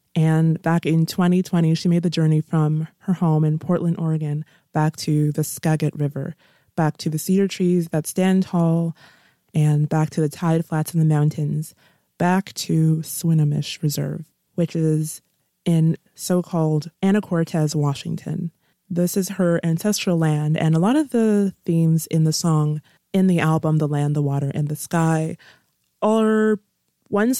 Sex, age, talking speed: female, 20-39, 160 wpm